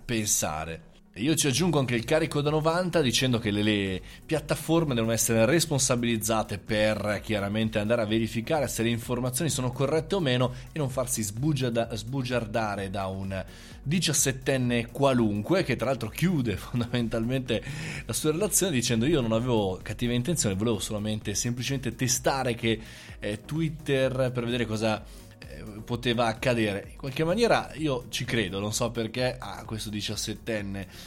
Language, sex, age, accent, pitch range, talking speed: Italian, male, 20-39, native, 105-130 Hz, 150 wpm